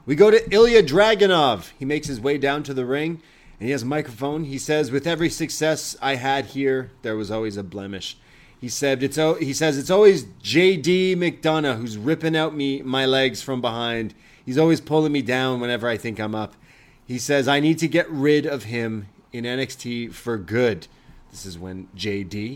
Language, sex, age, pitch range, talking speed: English, male, 30-49, 115-150 Hz, 200 wpm